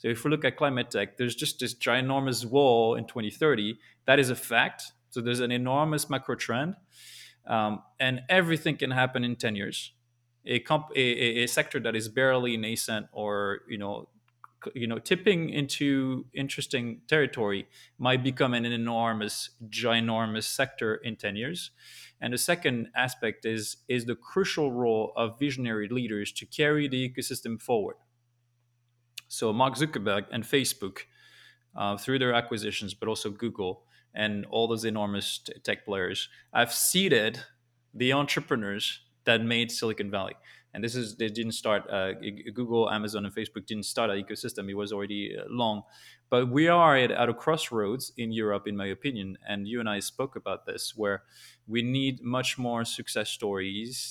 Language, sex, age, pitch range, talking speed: English, male, 20-39, 110-130 Hz, 165 wpm